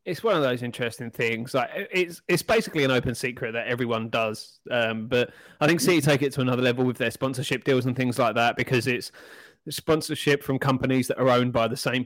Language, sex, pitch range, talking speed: English, male, 115-135 Hz, 225 wpm